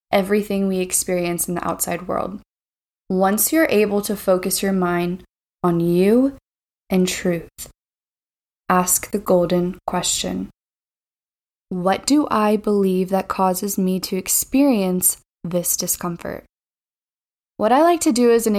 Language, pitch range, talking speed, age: English, 180-205 Hz, 130 wpm, 20-39